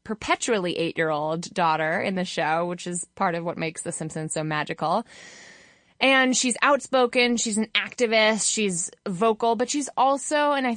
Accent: American